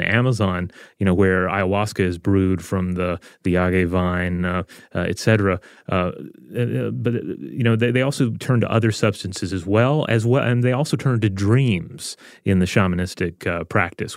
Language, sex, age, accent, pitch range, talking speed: English, male, 30-49, American, 100-120 Hz, 180 wpm